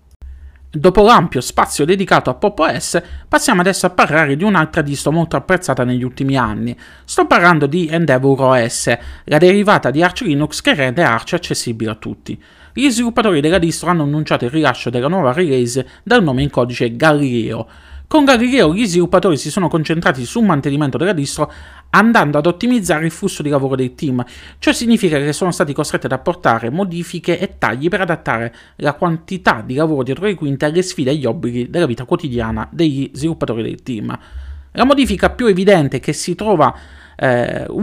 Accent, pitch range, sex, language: native, 130-185 Hz, male, Italian